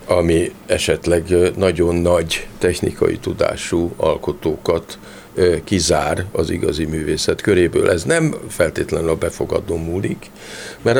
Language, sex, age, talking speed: Hungarian, male, 50-69, 105 wpm